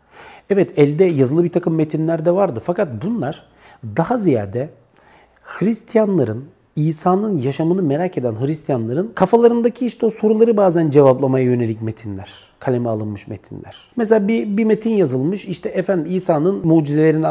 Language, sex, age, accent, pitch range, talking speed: Turkish, male, 40-59, native, 125-195 Hz, 130 wpm